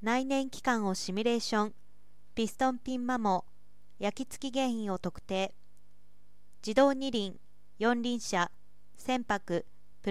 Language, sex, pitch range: Japanese, female, 205-260 Hz